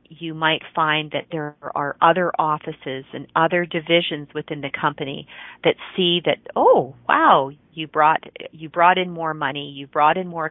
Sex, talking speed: female, 170 wpm